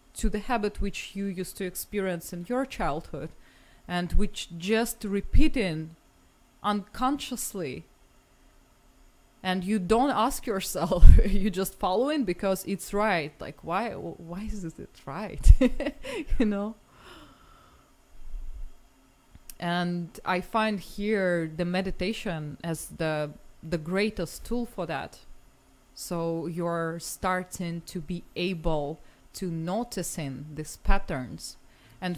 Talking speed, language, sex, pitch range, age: 110 wpm, English, female, 175-210 Hz, 20-39